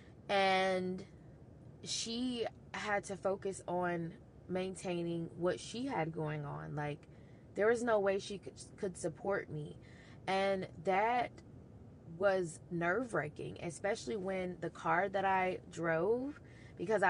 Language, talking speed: English, 120 wpm